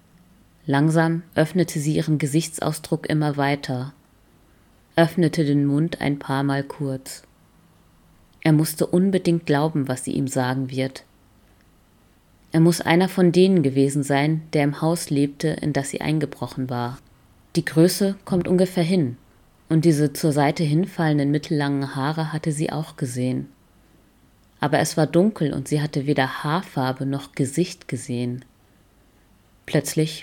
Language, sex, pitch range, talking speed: German, female, 120-155 Hz, 135 wpm